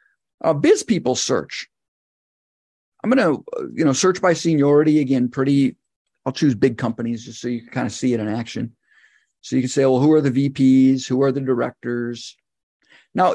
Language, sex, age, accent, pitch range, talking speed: English, male, 50-69, American, 130-170 Hz, 195 wpm